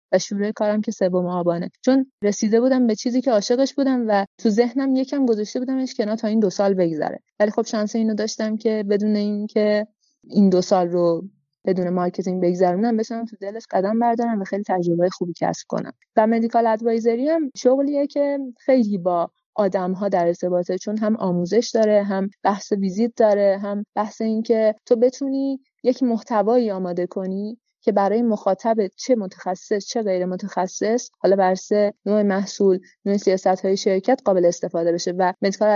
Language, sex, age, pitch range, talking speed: Persian, female, 30-49, 190-230 Hz, 170 wpm